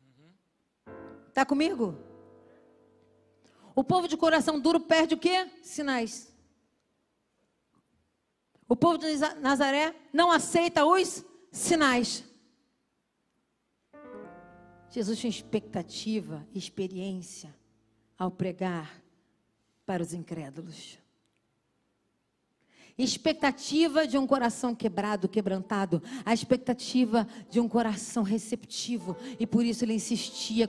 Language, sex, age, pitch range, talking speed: Portuguese, female, 40-59, 225-355 Hz, 90 wpm